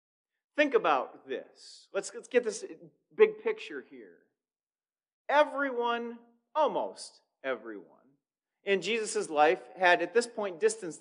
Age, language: 40-59, English